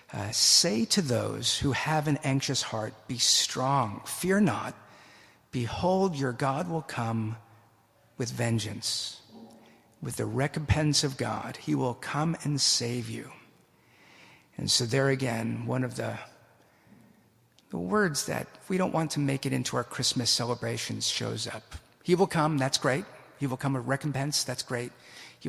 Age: 50-69